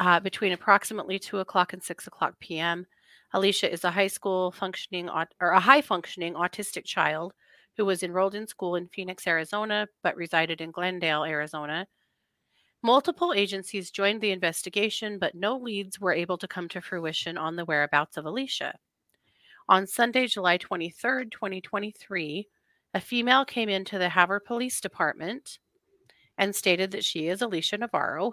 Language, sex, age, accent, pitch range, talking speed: English, female, 30-49, American, 175-210 Hz, 155 wpm